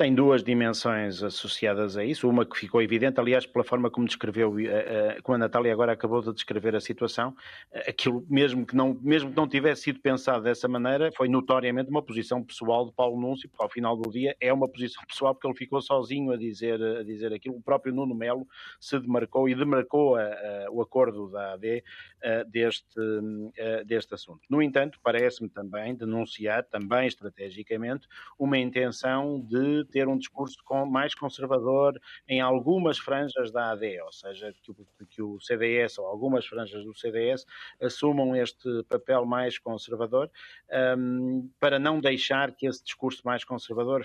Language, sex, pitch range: Portuguese, male, 115-130 Hz